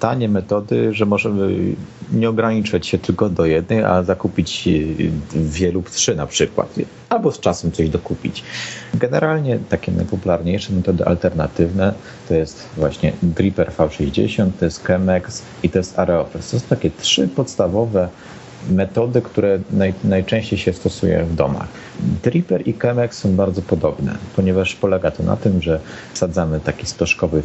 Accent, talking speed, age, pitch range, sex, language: native, 145 wpm, 30-49, 85-105 Hz, male, Polish